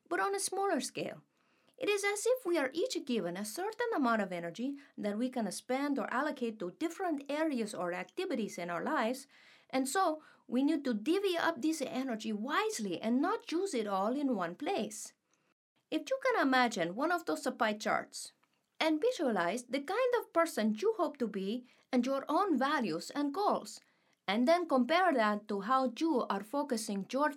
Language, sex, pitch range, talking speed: English, female, 235-350 Hz, 185 wpm